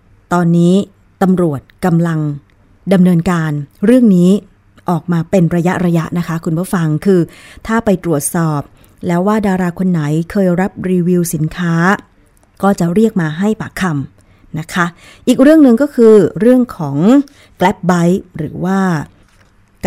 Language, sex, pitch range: Thai, female, 160-195 Hz